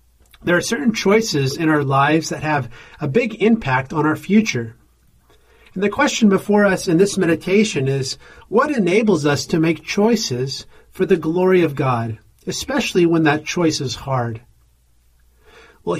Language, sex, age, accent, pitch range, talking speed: English, male, 40-59, American, 130-190 Hz, 160 wpm